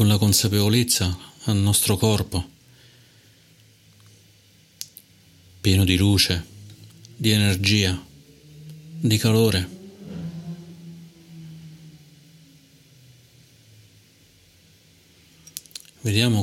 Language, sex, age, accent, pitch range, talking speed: Italian, male, 40-59, native, 95-115 Hz, 50 wpm